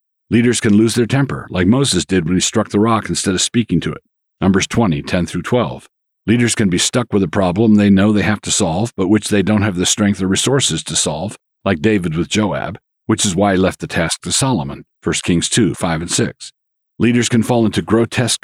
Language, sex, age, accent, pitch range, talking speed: English, male, 50-69, American, 90-115 Hz, 225 wpm